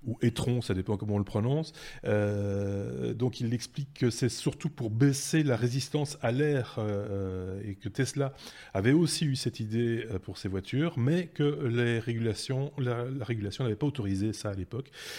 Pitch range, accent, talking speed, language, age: 105-135 Hz, French, 180 wpm, French, 30-49